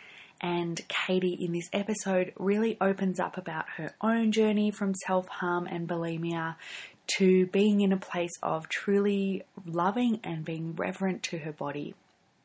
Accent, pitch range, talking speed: Australian, 170-200 Hz, 145 wpm